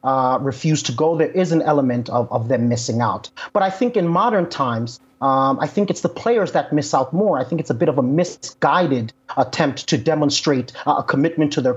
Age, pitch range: 30-49, 140-185 Hz